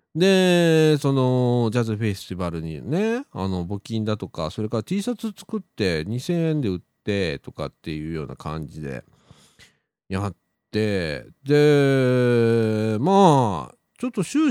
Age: 40-59